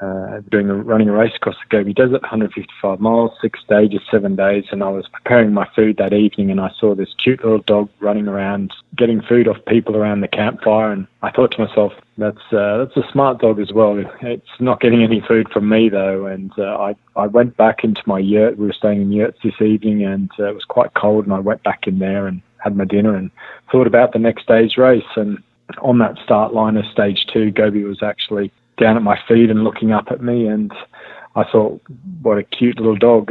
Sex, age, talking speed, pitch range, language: male, 20-39, 230 wpm, 100-115 Hz, English